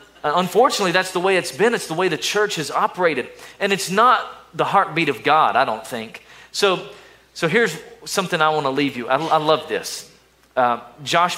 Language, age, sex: English, 40-59, male